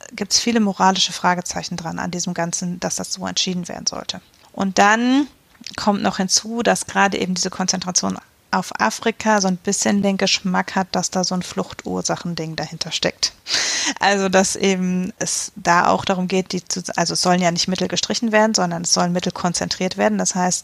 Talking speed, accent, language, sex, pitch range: 190 wpm, German, German, female, 175-195 Hz